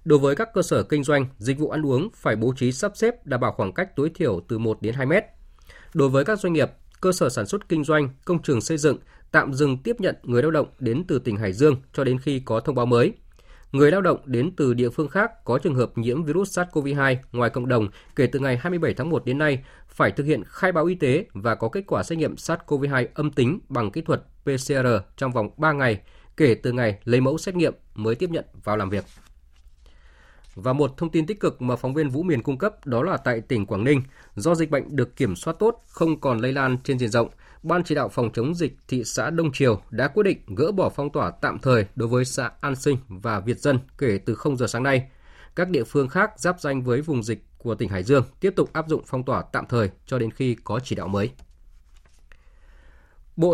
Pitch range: 115-155 Hz